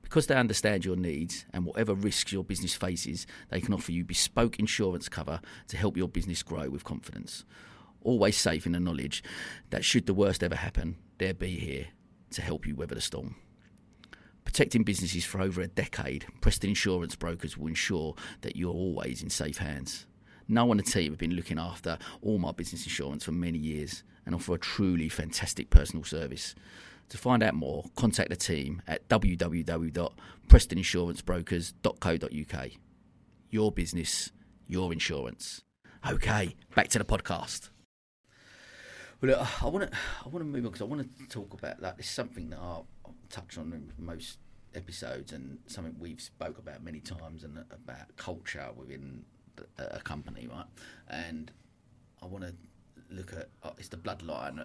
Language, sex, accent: English, male, British